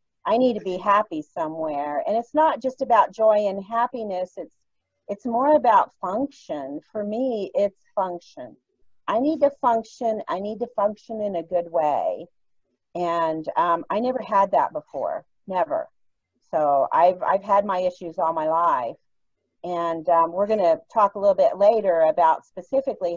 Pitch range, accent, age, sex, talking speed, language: 175-240 Hz, American, 40-59, female, 165 wpm, English